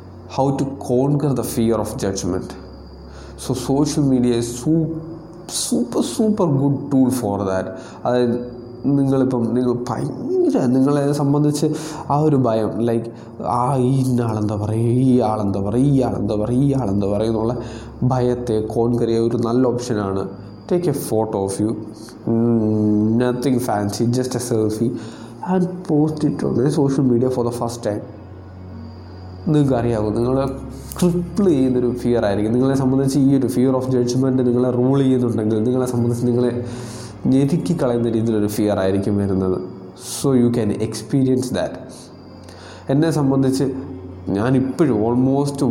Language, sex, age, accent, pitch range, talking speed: Malayalam, male, 20-39, native, 105-130 Hz, 135 wpm